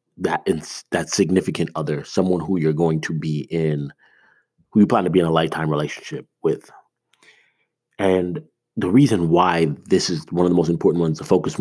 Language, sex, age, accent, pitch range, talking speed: English, male, 30-49, American, 80-95 Hz, 185 wpm